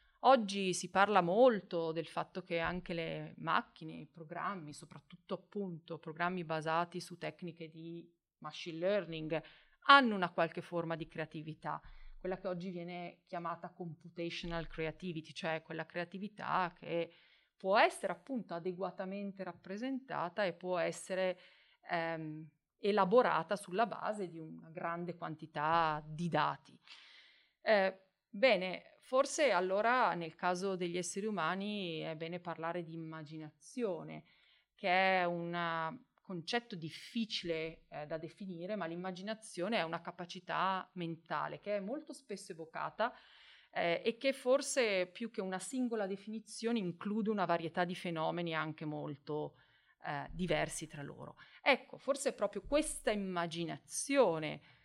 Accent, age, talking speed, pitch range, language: native, 40-59, 125 wpm, 165-200 Hz, Italian